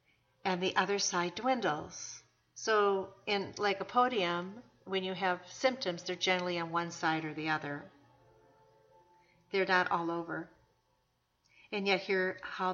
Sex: female